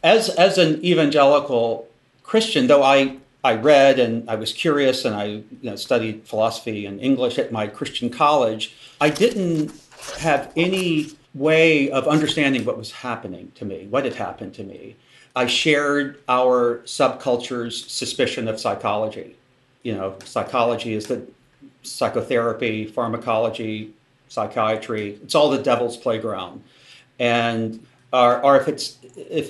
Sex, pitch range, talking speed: male, 120-150 Hz, 130 wpm